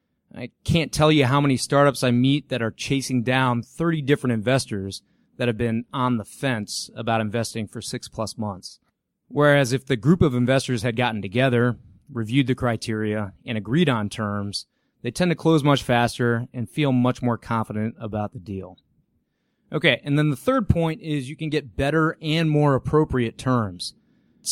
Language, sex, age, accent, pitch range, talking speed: English, male, 30-49, American, 115-145 Hz, 180 wpm